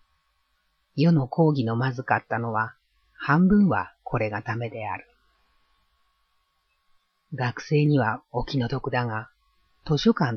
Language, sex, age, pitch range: Japanese, female, 40-59, 115-140 Hz